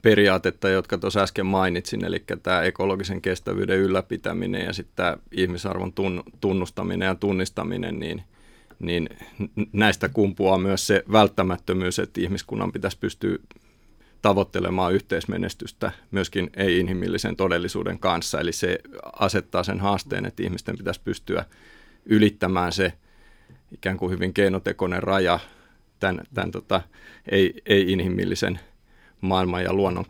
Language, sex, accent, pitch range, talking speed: Finnish, male, native, 90-100 Hz, 115 wpm